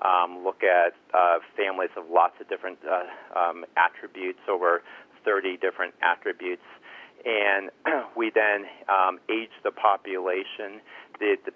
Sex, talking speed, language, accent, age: male, 130 wpm, English, American, 40-59